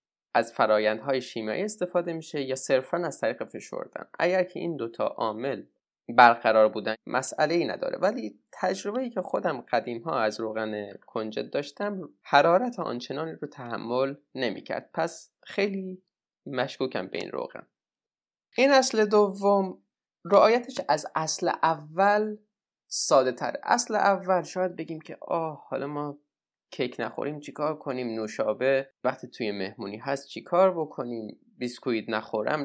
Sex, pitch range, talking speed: male, 115-185 Hz, 125 wpm